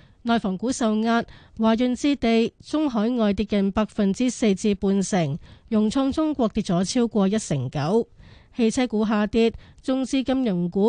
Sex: female